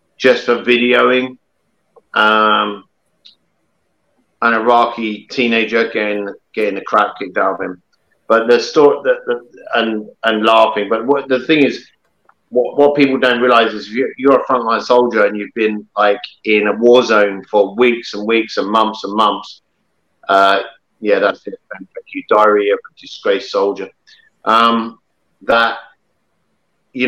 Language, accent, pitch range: English, British, 105-130 Hz